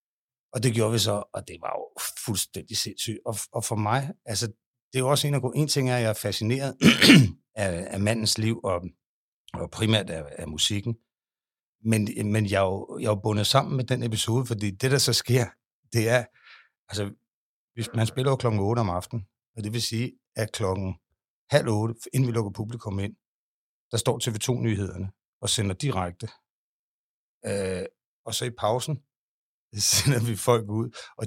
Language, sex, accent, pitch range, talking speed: Danish, male, native, 105-120 Hz, 190 wpm